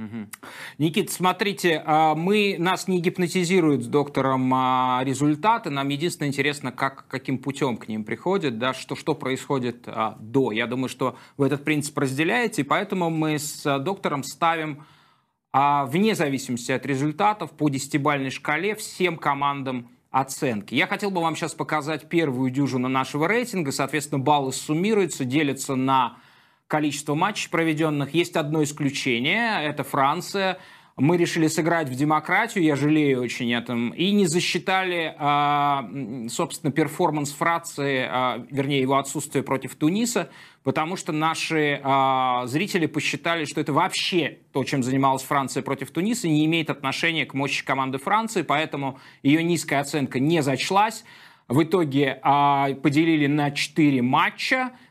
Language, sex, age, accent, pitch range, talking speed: Russian, male, 20-39, native, 135-170 Hz, 135 wpm